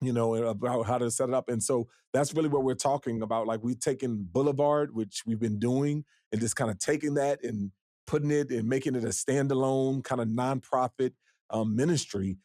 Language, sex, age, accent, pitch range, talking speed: English, male, 30-49, American, 115-150 Hz, 205 wpm